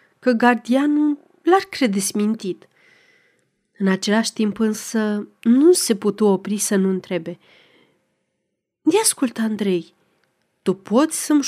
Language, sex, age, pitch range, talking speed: Romanian, female, 30-49, 195-255 Hz, 110 wpm